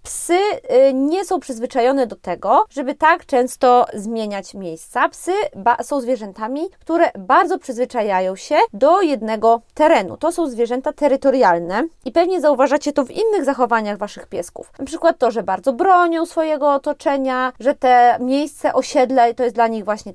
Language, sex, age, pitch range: Polish, female, 20-39, 230-295 Hz